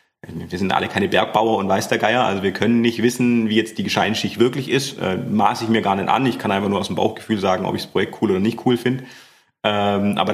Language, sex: German, male